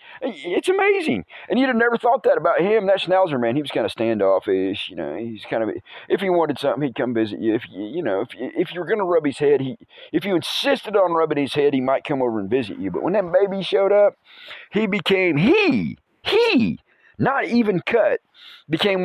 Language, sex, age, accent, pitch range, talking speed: English, male, 40-59, American, 135-210 Hz, 225 wpm